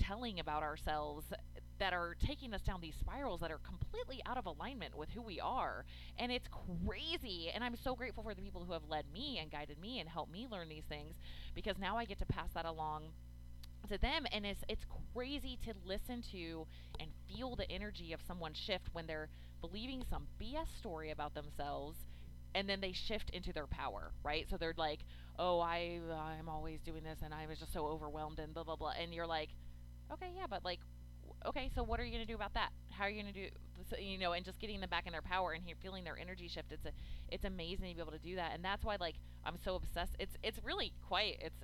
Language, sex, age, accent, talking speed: English, female, 20-39, American, 235 wpm